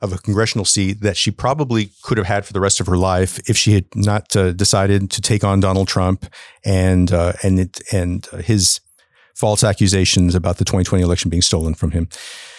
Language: English